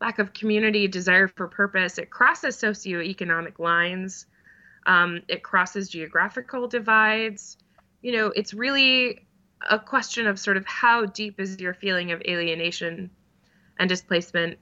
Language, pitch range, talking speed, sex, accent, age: English, 170-210 Hz, 135 wpm, female, American, 20-39